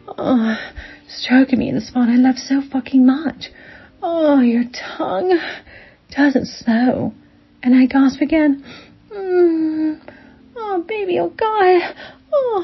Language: English